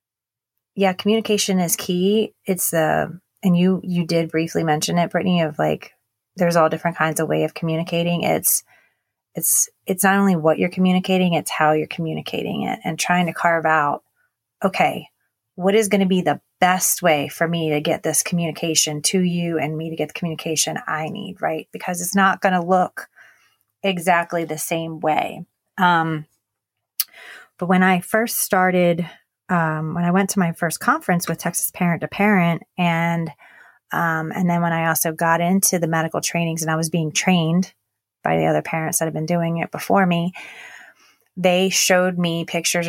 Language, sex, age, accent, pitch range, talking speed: English, female, 30-49, American, 160-185 Hz, 180 wpm